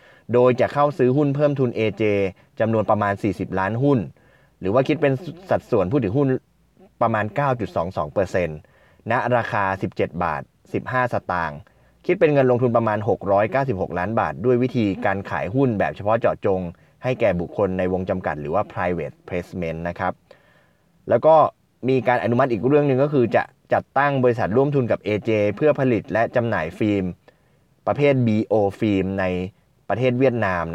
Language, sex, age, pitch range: Thai, male, 20-39, 95-130 Hz